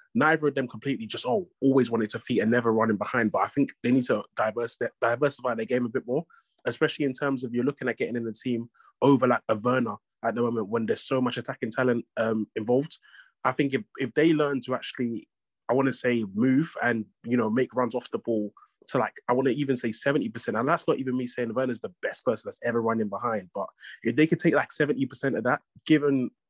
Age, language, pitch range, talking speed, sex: 20-39, English, 120-145 Hz, 240 wpm, male